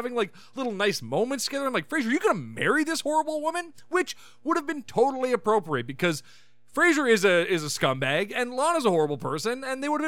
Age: 30-49